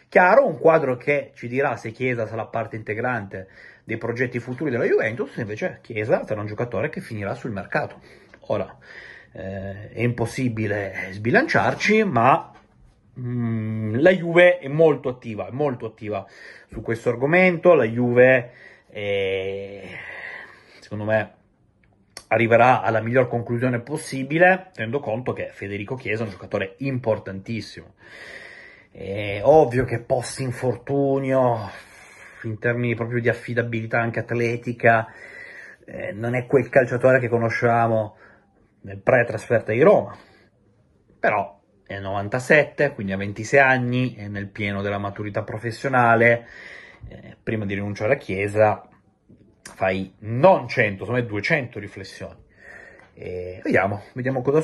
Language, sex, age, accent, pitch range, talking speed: Italian, male, 30-49, native, 105-130 Hz, 120 wpm